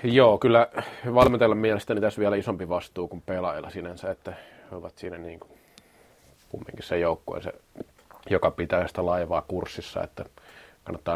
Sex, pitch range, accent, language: male, 90-110 Hz, native, Finnish